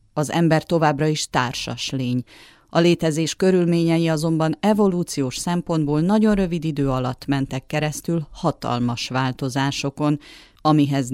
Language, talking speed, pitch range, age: Hungarian, 115 wpm, 130-170 Hz, 30-49